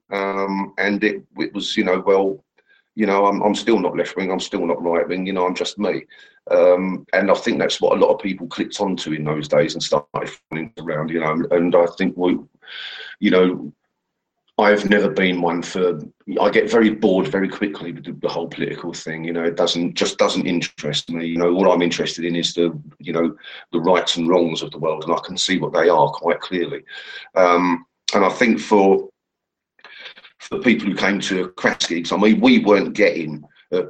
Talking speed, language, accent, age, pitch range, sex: 215 wpm, English, British, 40-59, 85-110 Hz, male